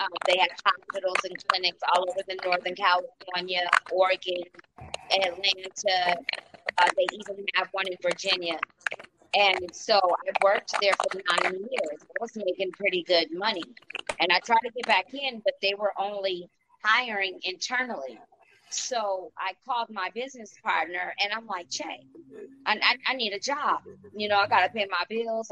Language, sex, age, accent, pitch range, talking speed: English, female, 30-49, American, 185-225 Hz, 165 wpm